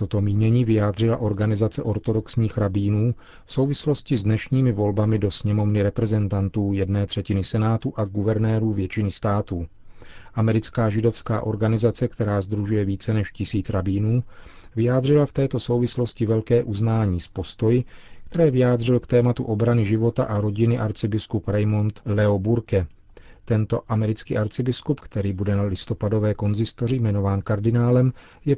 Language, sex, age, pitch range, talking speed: Czech, male, 40-59, 100-115 Hz, 130 wpm